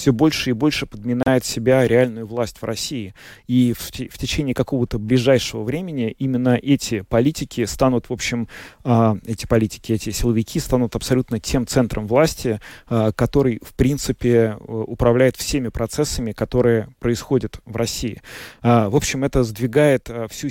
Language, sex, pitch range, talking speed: Russian, male, 110-130 Hz, 135 wpm